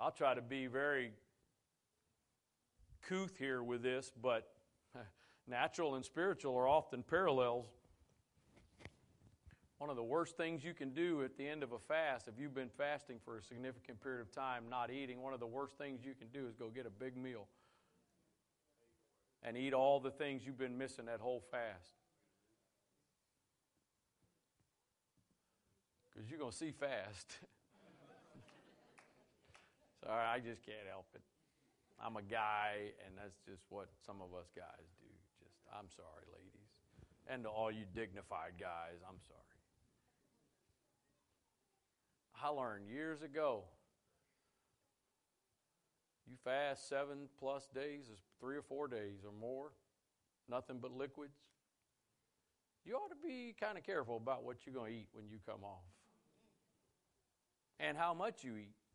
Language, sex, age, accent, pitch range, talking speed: English, male, 50-69, American, 110-140 Hz, 145 wpm